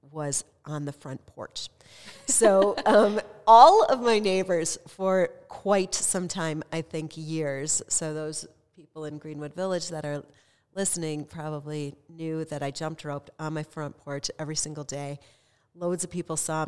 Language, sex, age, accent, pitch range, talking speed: English, female, 40-59, American, 150-190 Hz, 160 wpm